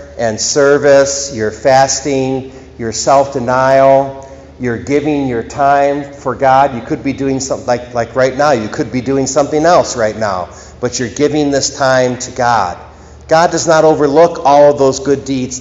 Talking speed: 175 wpm